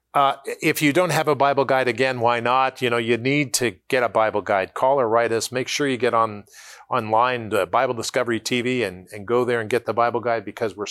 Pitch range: 110-155 Hz